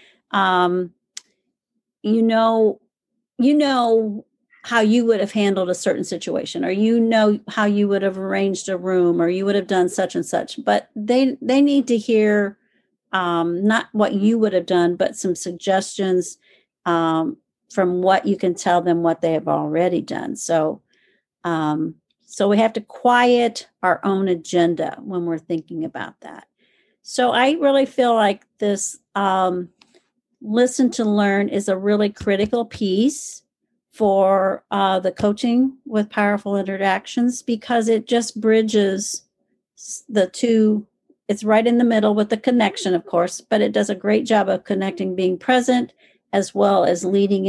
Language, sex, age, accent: English, female, 50-69, American